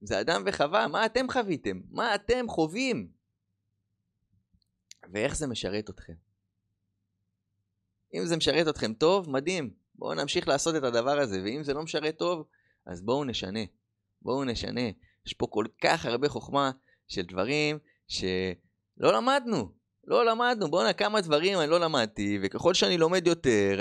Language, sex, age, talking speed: Hebrew, male, 20-39, 145 wpm